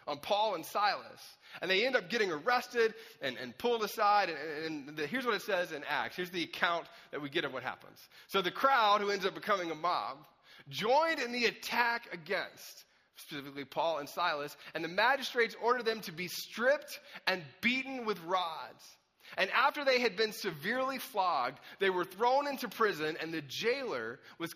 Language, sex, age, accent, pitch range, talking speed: English, male, 30-49, American, 180-240 Hz, 190 wpm